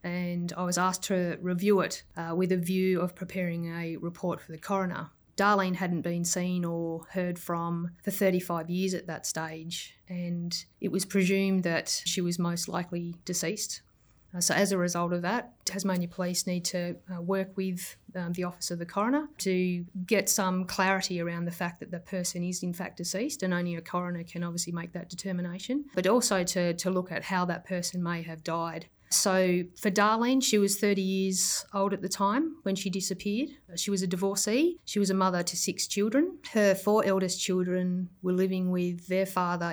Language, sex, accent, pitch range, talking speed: English, female, Australian, 175-190 Hz, 195 wpm